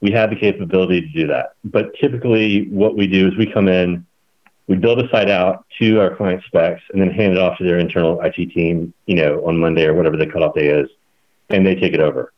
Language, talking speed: English, 240 wpm